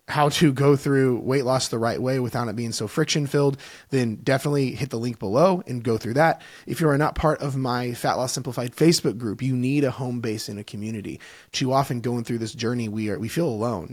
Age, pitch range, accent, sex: 30-49, 115-140 Hz, American, male